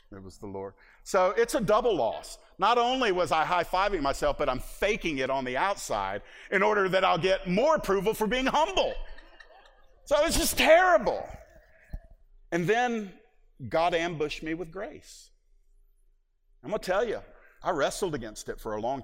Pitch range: 130-210 Hz